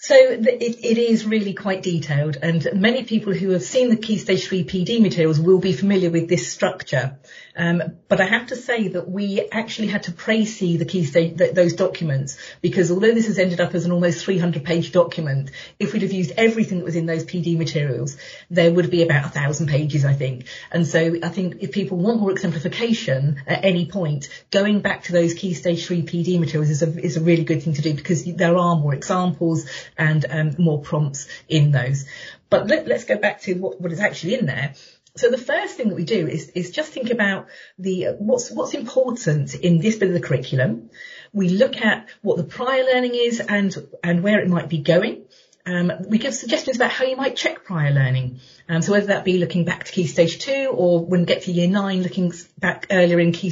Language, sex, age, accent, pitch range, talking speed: English, female, 40-59, British, 165-215 Hz, 215 wpm